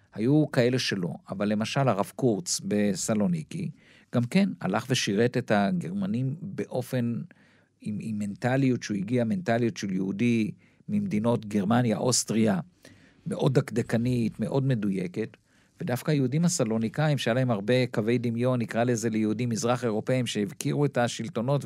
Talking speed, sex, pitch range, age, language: 125 wpm, male, 110-140 Hz, 50-69, Hebrew